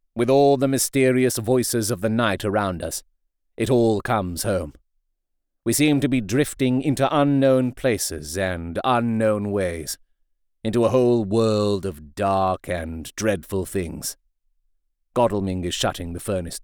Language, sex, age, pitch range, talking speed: English, male, 40-59, 95-135 Hz, 140 wpm